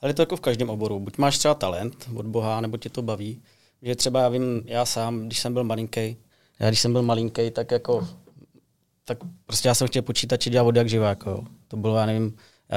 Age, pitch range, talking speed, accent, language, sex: 20-39, 110-125 Hz, 230 wpm, native, Czech, male